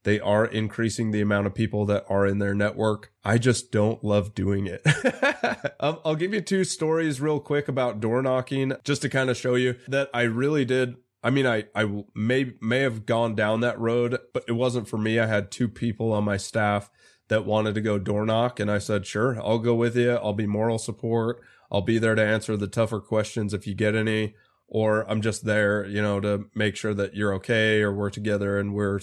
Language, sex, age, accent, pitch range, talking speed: English, male, 20-39, American, 105-125 Hz, 225 wpm